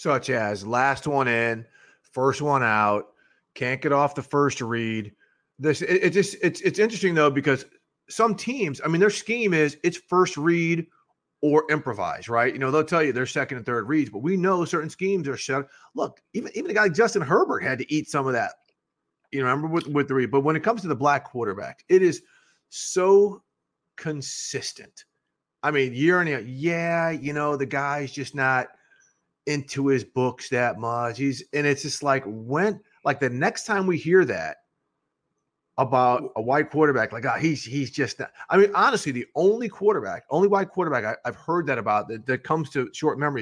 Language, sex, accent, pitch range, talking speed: English, male, American, 125-170 Hz, 200 wpm